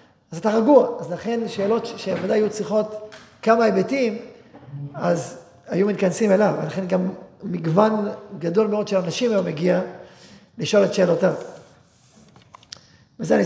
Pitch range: 160-210 Hz